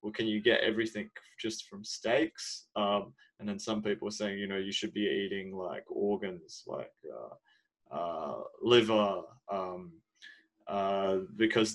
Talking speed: 155 wpm